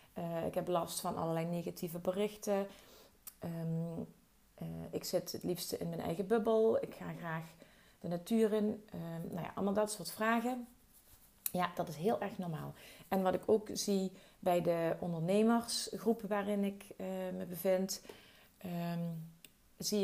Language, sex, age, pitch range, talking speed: Dutch, female, 30-49, 170-210 Hz, 145 wpm